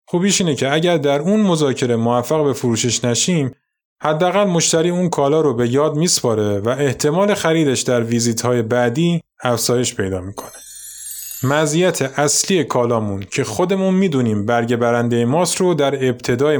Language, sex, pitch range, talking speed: Persian, male, 120-160 Hz, 145 wpm